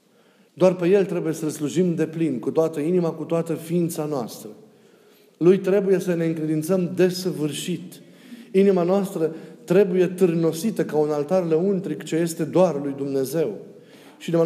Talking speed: 150 wpm